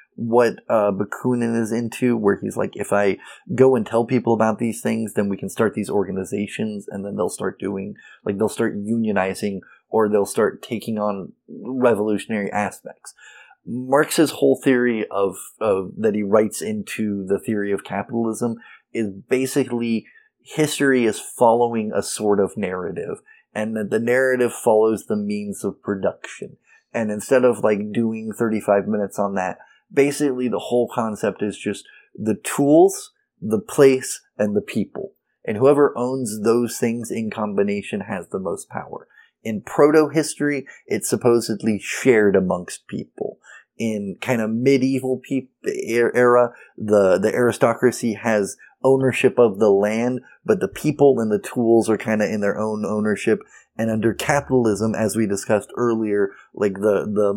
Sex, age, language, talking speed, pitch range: male, 20-39, English, 150 wpm, 105-125 Hz